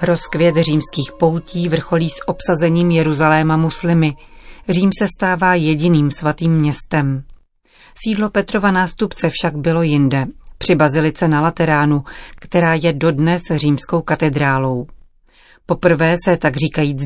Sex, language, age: female, Czech, 40-59